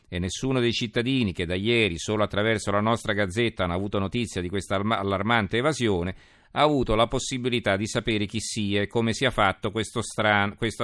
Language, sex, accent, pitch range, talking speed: Italian, male, native, 95-115 Hz, 185 wpm